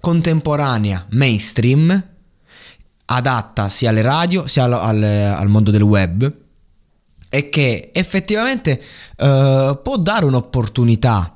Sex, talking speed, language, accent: male, 105 wpm, Italian, native